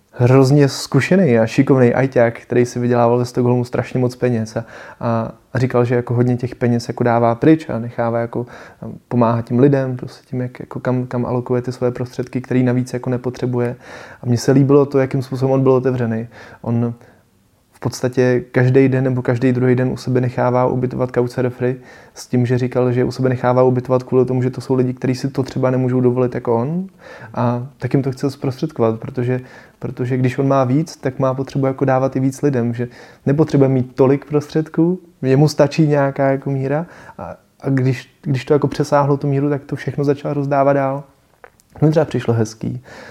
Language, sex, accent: Czech, male, native